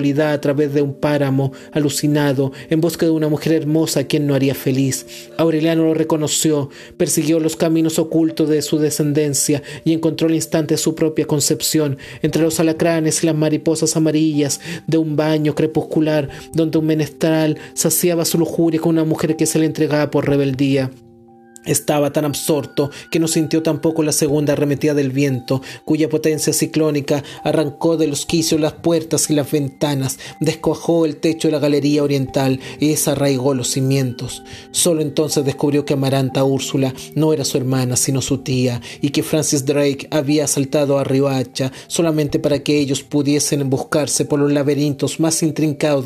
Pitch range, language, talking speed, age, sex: 140-160 Hz, Spanish, 165 wpm, 30-49, male